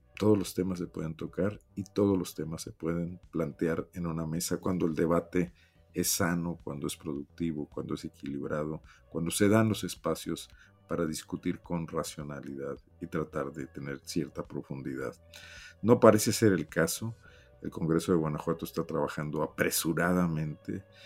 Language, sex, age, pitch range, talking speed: Spanish, male, 50-69, 80-105 Hz, 155 wpm